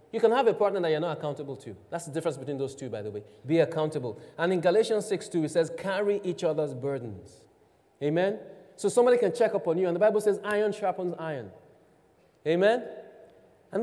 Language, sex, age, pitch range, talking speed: English, male, 30-49, 165-225 Hz, 210 wpm